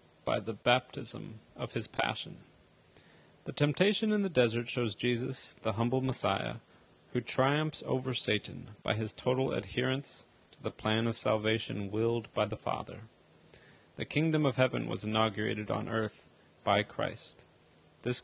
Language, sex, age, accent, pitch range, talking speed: English, male, 30-49, American, 105-130 Hz, 145 wpm